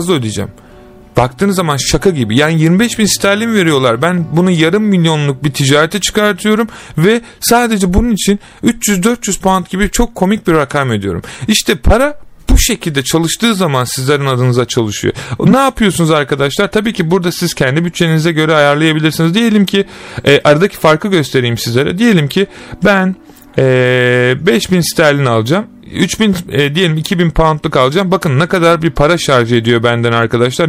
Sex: male